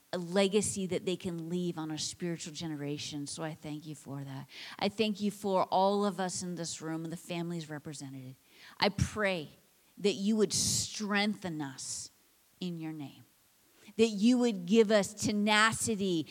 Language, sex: English, female